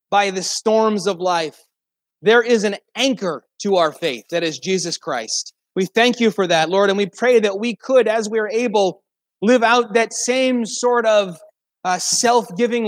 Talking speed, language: 185 wpm, English